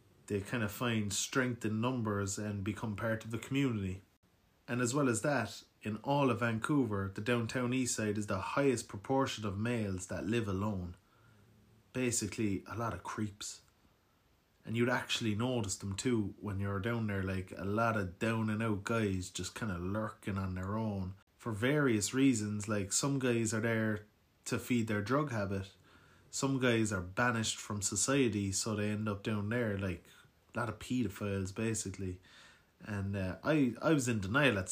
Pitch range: 100-120 Hz